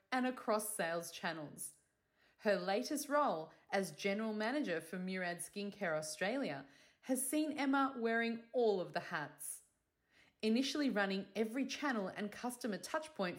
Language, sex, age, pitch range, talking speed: English, female, 30-49, 190-275 Hz, 130 wpm